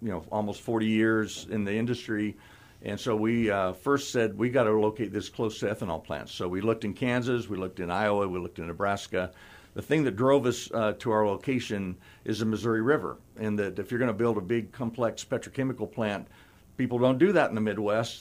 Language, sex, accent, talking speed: English, male, American, 225 wpm